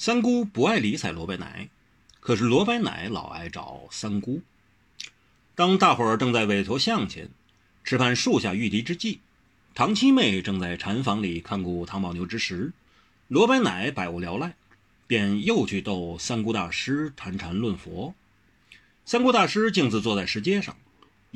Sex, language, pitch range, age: male, Chinese, 95-155 Hz, 30-49